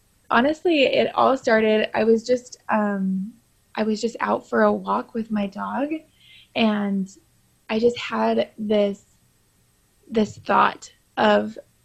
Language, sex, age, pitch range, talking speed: English, female, 20-39, 200-225 Hz, 130 wpm